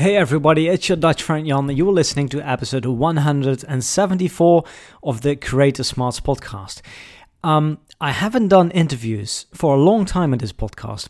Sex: male